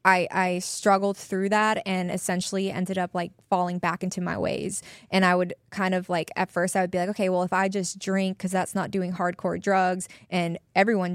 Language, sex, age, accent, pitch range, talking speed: English, female, 20-39, American, 180-195 Hz, 220 wpm